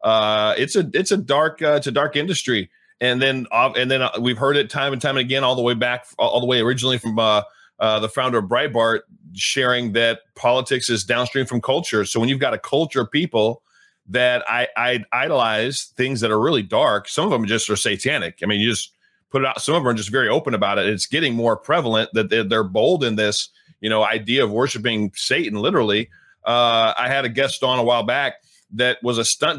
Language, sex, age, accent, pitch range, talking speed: English, male, 30-49, American, 115-140 Hz, 235 wpm